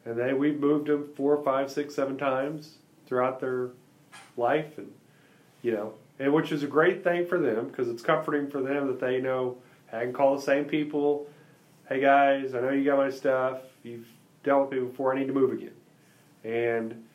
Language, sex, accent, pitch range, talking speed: English, male, American, 125-150 Hz, 200 wpm